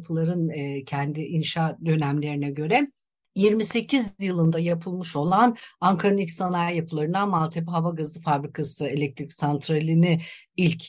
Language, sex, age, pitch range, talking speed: Turkish, female, 50-69, 150-210 Hz, 110 wpm